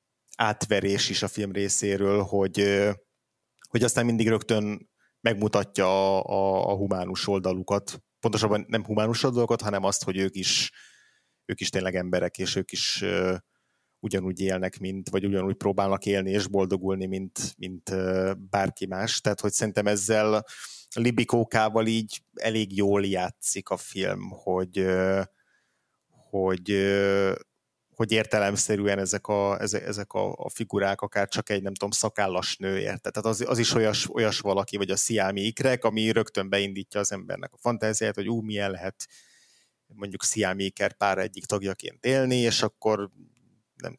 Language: Hungarian